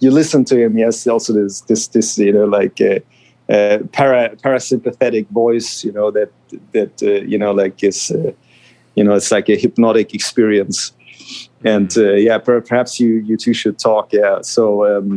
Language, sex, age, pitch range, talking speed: English, male, 30-49, 110-135 Hz, 180 wpm